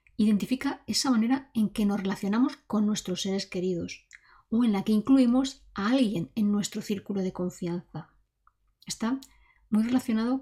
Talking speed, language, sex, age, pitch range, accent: 150 wpm, Spanish, female, 20-39, 190-230 Hz, Spanish